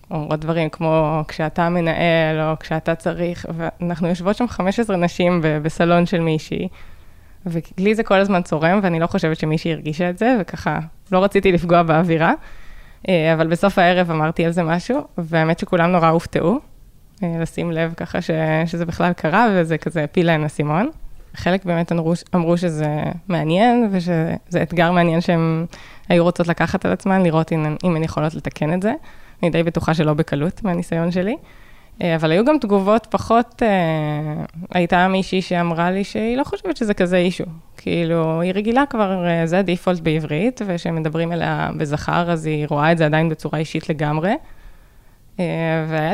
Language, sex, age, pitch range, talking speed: Hebrew, female, 20-39, 160-190 Hz, 150 wpm